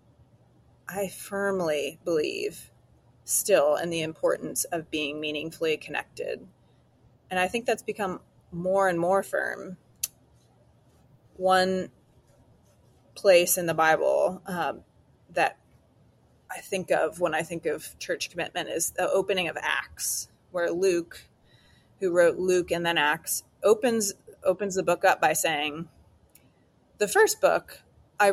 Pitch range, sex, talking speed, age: 170-205 Hz, female, 125 wpm, 30-49